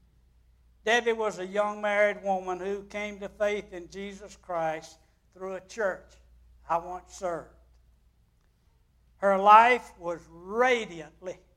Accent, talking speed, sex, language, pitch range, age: American, 120 wpm, male, English, 135-195 Hz, 60-79